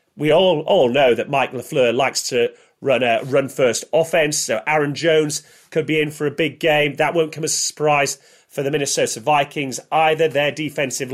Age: 30-49